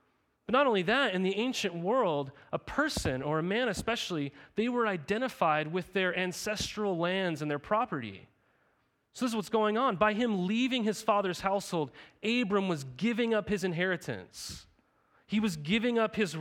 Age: 30-49